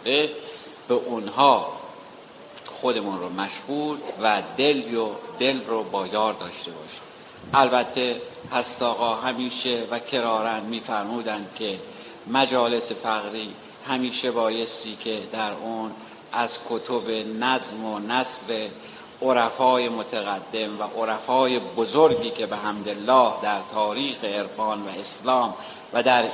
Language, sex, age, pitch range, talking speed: Persian, male, 60-79, 110-135 Hz, 105 wpm